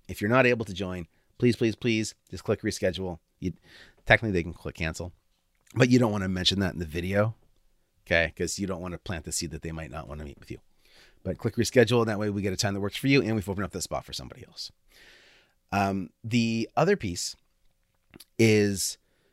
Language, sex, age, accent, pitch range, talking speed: English, male, 30-49, American, 90-115 Hz, 225 wpm